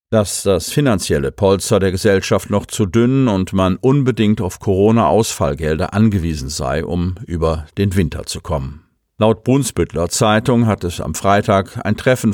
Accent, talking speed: German, 150 wpm